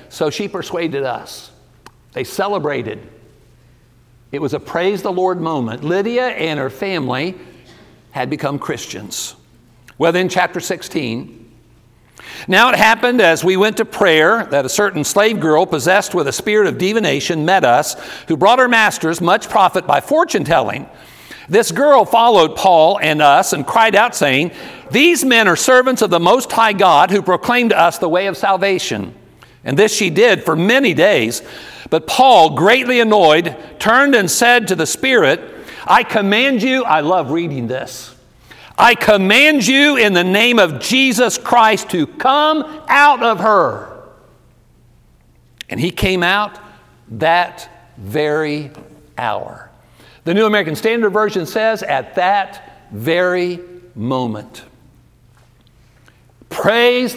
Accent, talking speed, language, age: American, 145 wpm, English, 60-79